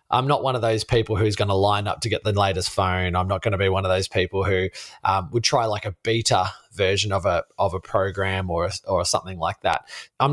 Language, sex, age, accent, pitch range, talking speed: English, male, 20-39, Australian, 95-120 Hz, 255 wpm